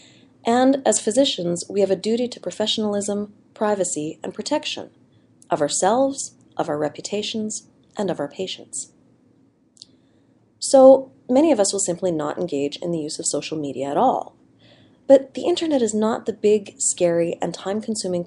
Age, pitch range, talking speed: 30-49, 180-255 Hz, 155 wpm